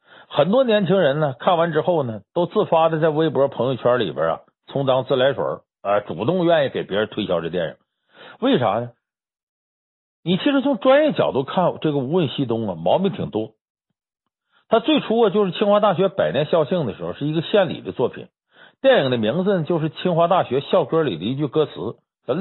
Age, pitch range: 50-69, 145-225 Hz